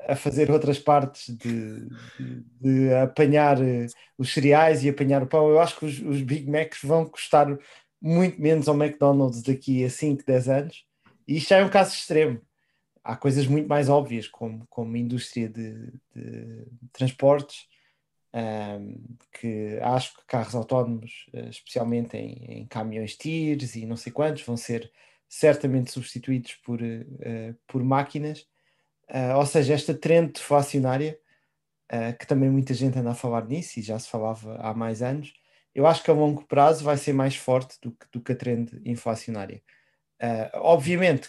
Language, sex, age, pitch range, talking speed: Portuguese, male, 20-39, 120-150 Hz, 170 wpm